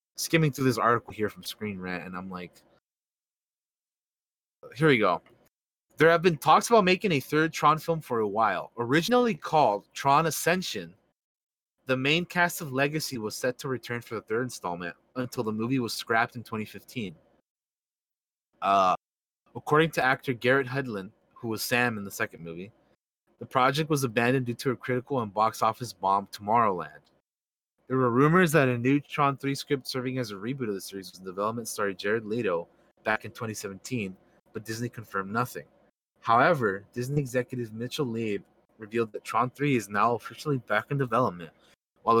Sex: male